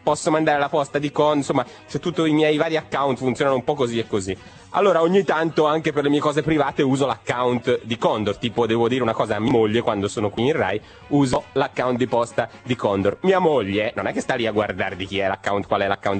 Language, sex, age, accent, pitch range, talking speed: Italian, male, 30-49, native, 120-155 Hz, 250 wpm